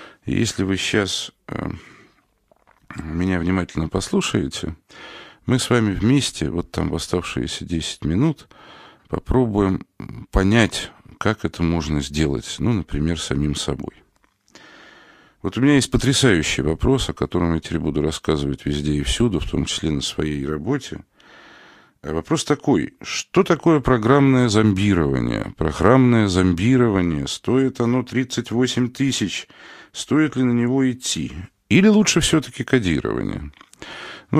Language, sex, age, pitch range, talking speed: Russian, male, 40-59, 80-125 Hz, 120 wpm